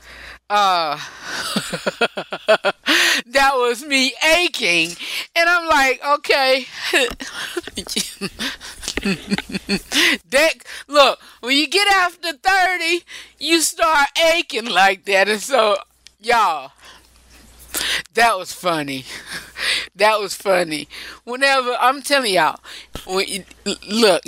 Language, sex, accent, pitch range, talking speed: English, female, American, 195-295 Hz, 90 wpm